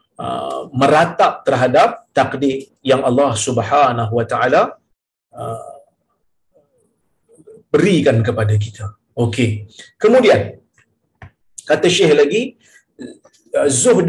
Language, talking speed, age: Malayalam, 80 wpm, 50-69